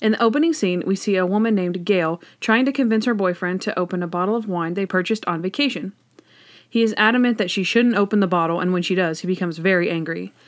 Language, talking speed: English, 240 wpm